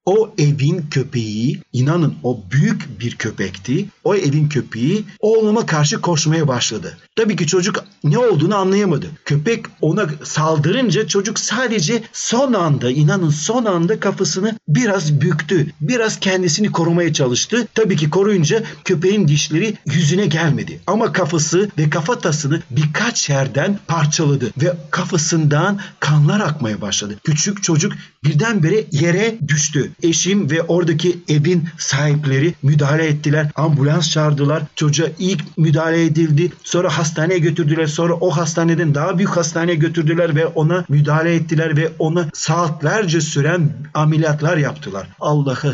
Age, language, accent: 50-69, Turkish, native